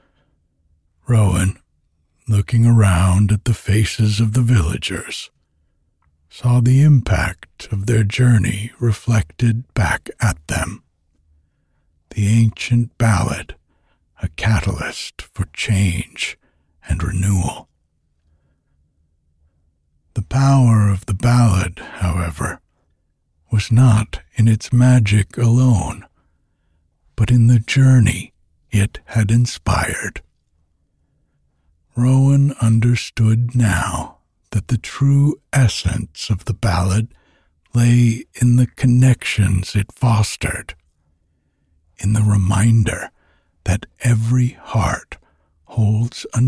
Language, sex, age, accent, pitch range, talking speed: English, male, 60-79, American, 80-115 Hz, 90 wpm